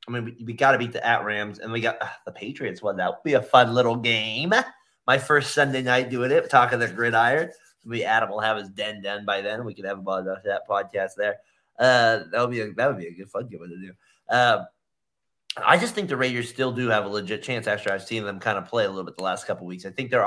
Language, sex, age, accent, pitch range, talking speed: English, male, 20-39, American, 105-125 Hz, 270 wpm